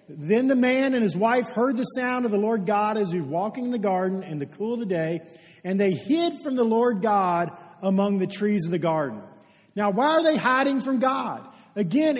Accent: American